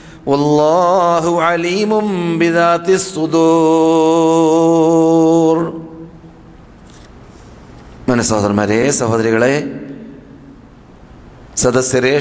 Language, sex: Malayalam, male